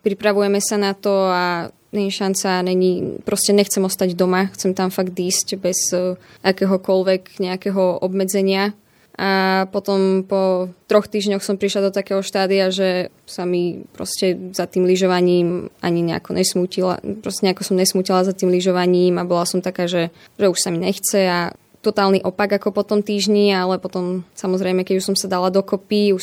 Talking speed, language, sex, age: 165 wpm, Slovak, female, 20-39